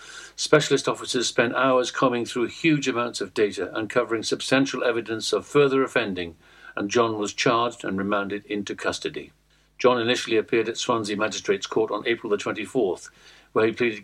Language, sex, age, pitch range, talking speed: English, male, 60-79, 115-135 Hz, 160 wpm